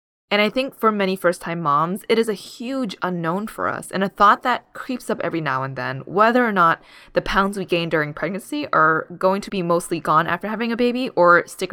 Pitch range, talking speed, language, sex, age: 160-205 Hz, 230 wpm, English, female, 20-39